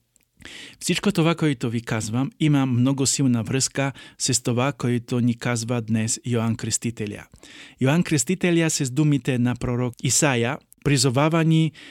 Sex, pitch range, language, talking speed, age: male, 120-155 Hz, Polish, 125 wpm, 50-69